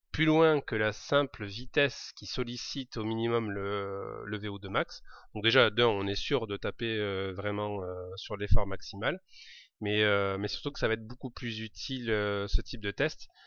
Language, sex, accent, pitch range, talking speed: French, male, French, 105-130 Hz, 190 wpm